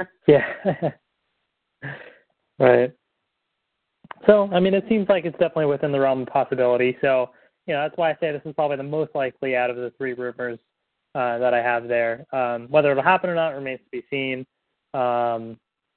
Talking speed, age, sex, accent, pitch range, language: 190 wpm, 20-39, male, American, 125-165 Hz, English